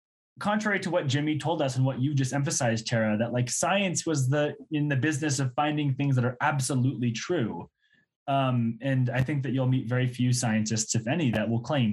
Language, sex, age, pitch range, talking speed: English, male, 10-29, 115-145 Hz, 210 wpm